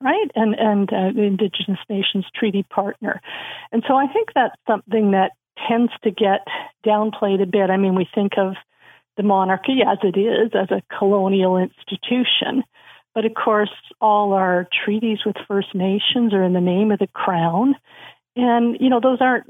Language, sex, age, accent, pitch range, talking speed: English, female, 50-69, American, 190-220 Hz, 175 wpm